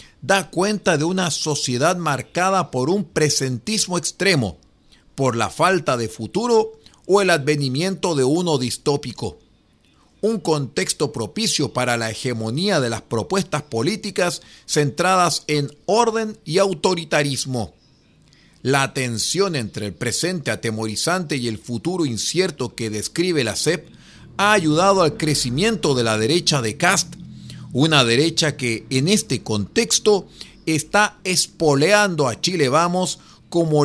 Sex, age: male, 40-59